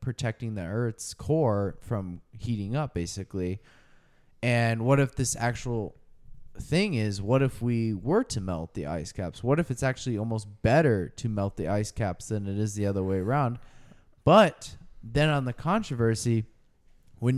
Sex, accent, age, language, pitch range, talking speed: male, American, 20-39, English, 105-135 Hz, 165 wpm